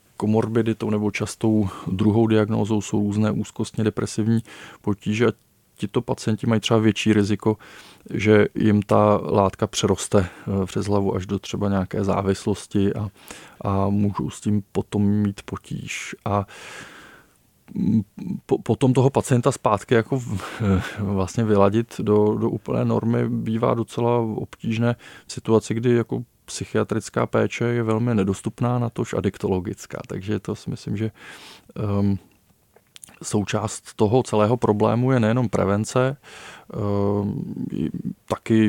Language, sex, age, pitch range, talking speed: Czech, male, 20-39, 100-115 Hz, 120 wpm